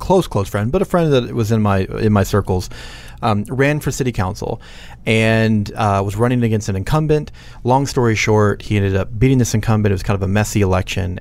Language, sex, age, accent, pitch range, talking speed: English, male, 30-49, American, 100-125 Hz, 220 wpm